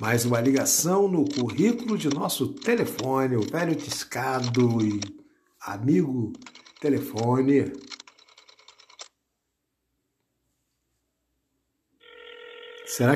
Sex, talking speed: male, 70 wpm